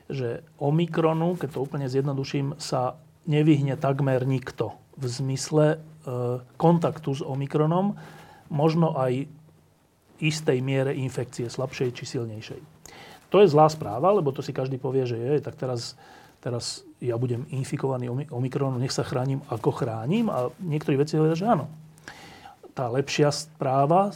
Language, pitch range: Slovak, 130-165 Hz